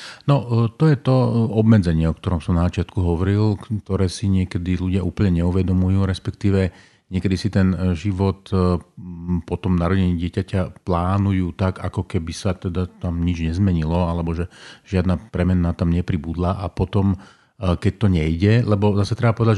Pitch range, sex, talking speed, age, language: 90-105 Hz, male, 150 wpm, 40-59, Slovak